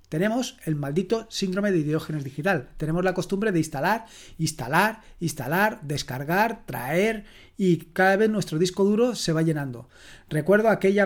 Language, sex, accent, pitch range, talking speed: Spanish, male, Spanish, 155-200 Hz, 145 wpm